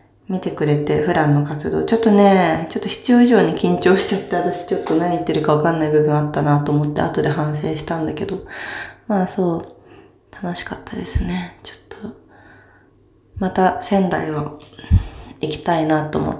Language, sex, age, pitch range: Japanese, female, 20-39, 155-230 Hz